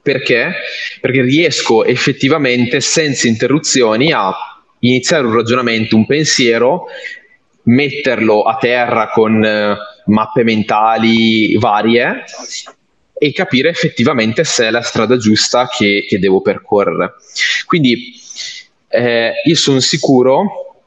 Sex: male